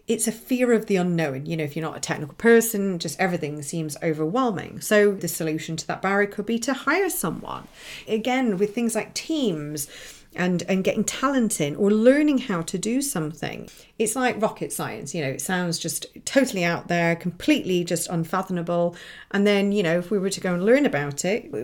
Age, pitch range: 40-59, 170-230 Hz